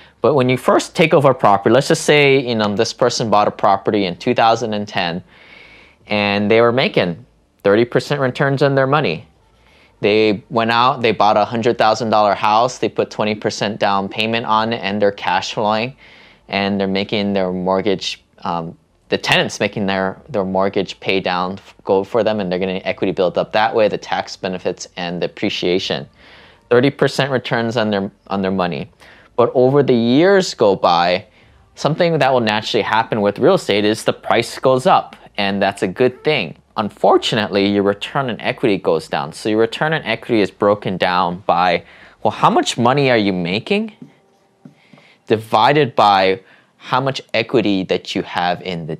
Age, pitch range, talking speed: 20-39, 100-120 Hz, 175 wpm